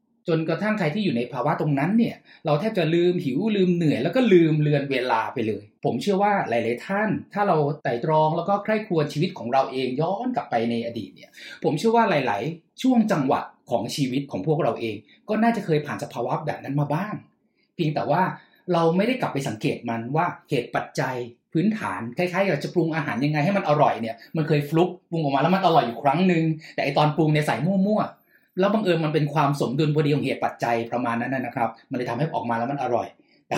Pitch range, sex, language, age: 135-185 Hz, male, Thai, 20-39